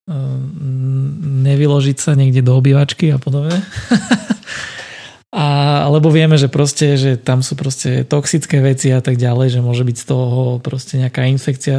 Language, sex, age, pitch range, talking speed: Slovak, male, 20-39, 130-145 Hz, 150 wpm